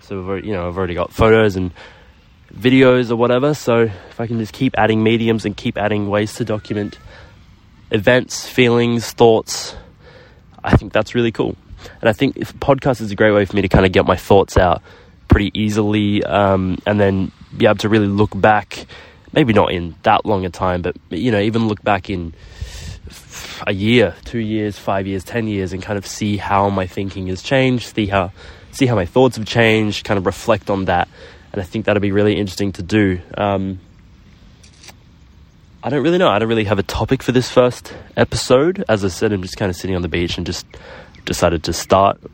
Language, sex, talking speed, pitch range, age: English, male, 210 wpm, 95-110 Hz, 20-39